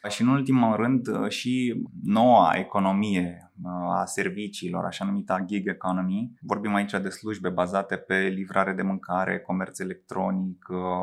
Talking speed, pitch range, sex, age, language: 130 wpm, 95-110 Hz, male, 20-39, Romanian